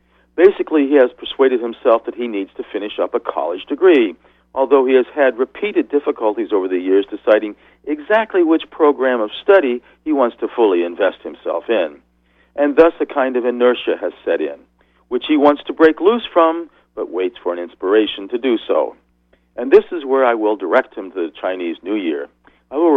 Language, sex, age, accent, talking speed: English, male, 50-69, American, 195 wpm